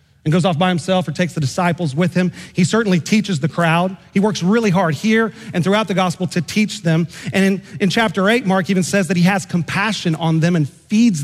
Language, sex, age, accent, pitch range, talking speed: English, male, 40-59, American, 155-190 Hz, 235 wpm